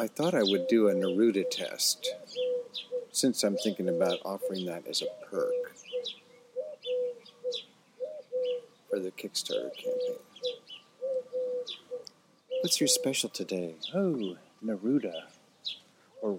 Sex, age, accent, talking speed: male, 50-69, American, 105 wpm